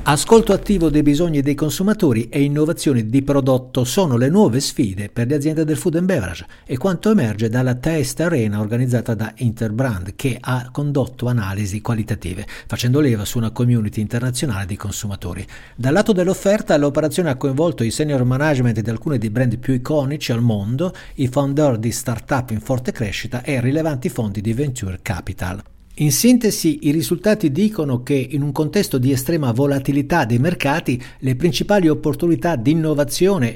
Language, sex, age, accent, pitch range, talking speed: Italian, male, 60-79, native, 120-155 Hz, 165 wpm